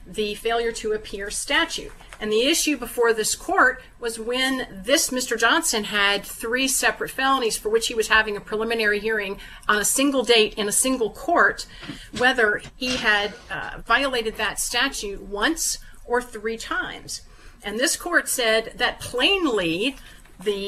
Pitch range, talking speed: 210-255 Hz, 155 wpm